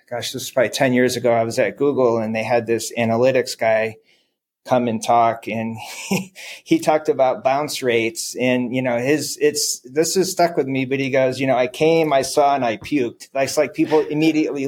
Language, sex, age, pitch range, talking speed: English, male, 30-49, 115-145 Hz, 215 wpm